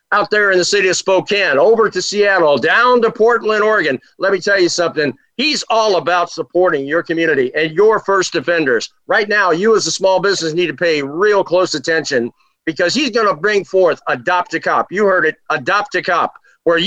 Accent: American